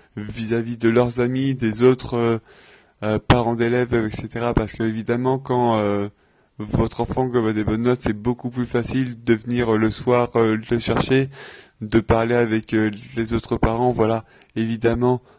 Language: English